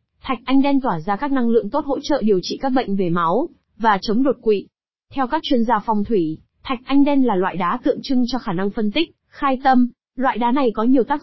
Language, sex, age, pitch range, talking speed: Vietnamese, female, 20-39, 205-260 Hz, 255 wpm